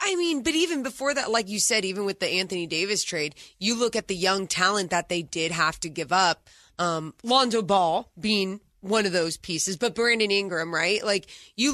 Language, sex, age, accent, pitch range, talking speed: English, female, 20-39, American, 175-230 Hz, 215 wpm